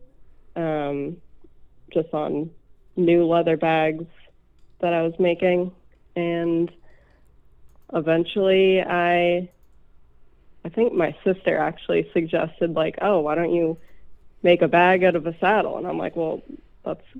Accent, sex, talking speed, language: American, female, 125 wpm, English